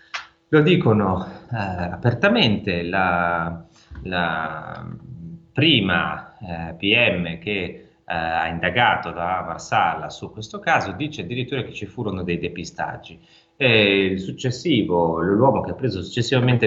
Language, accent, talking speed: Italian, native, 120 wpm